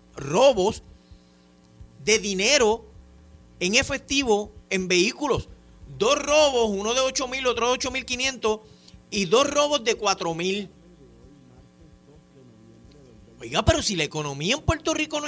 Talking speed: 115 wpm